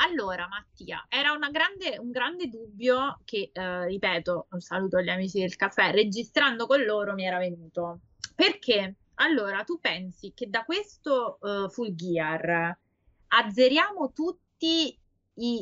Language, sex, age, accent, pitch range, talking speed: Italian, female, 20-39, native, 180-245 Hz, 140 wpm